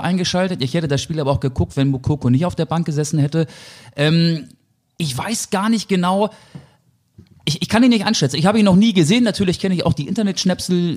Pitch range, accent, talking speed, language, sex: 135-165 Hz, German, 220 wpm, German, male